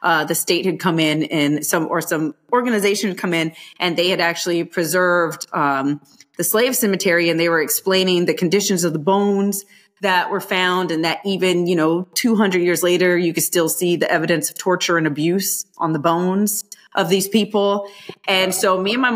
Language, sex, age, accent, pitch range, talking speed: English, female, 30-49, American, 165-195 Hz, 200 wpm